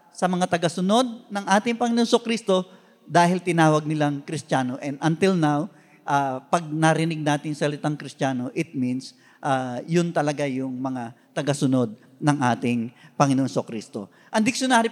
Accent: native